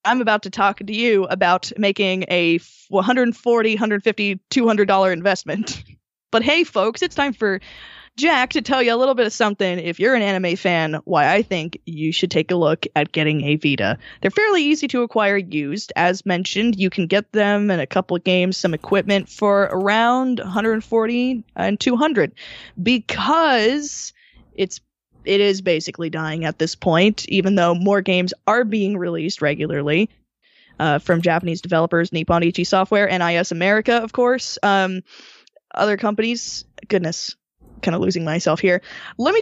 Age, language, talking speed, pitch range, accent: 20-39, English, 165 wpm, 175-225 Hz, American